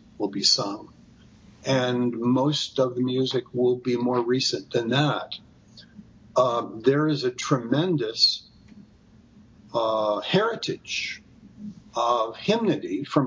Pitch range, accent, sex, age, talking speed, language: 125-155 Hz, American, male, 50-69, 110 wpm, English